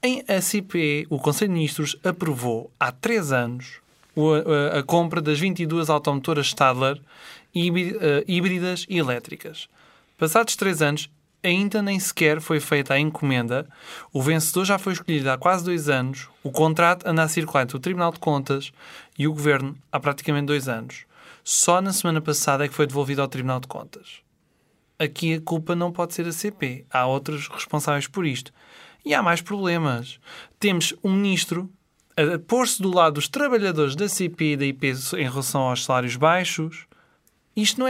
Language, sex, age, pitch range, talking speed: Portuguese, male, 20-39, 145-185 Hz, 165 wpm